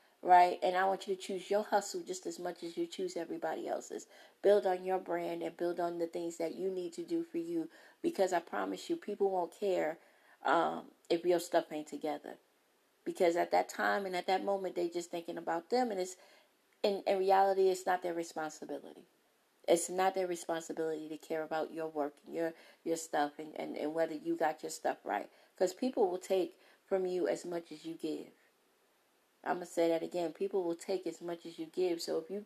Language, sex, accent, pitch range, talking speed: English, female, American, 170-205 Hz, 220 wpm